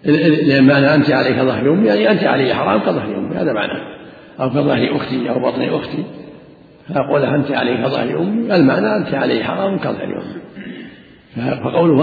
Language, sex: Arabic, male